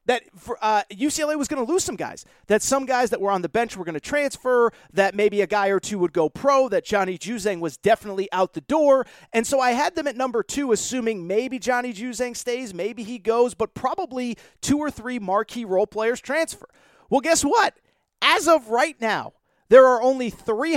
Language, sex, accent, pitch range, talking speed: English, male, American, 200-260 Hz, 215 wpm